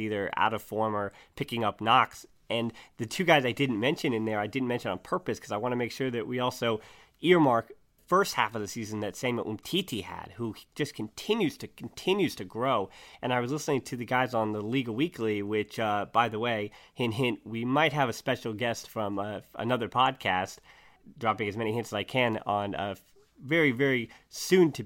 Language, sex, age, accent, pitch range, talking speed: English, male, 30-49, American, 105-130 Hz, 215 wpm